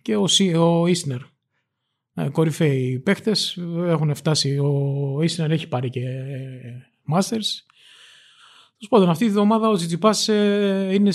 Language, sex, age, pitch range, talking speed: Greek, male, 20-39, 145-195 Hz, 115 wpm